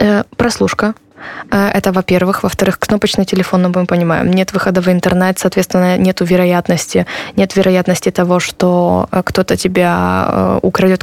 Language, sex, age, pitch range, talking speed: Polish, female, 20-39, 180-200 Hz, 125 wpm